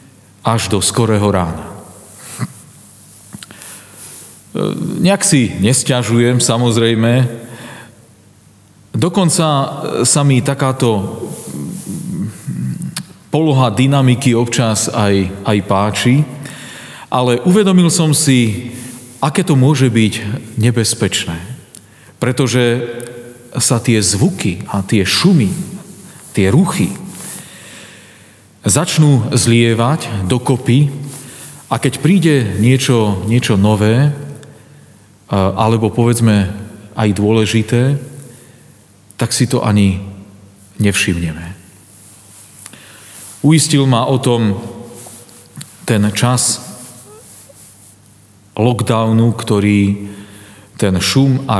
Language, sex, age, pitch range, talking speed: Slovak, male, 40-59, 100-130 Hz, 75 wpm